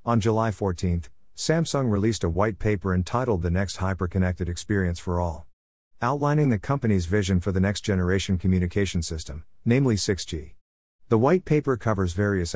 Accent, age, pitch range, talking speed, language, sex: American, 50-69, 90-115 Hz, 150 wpm, English, male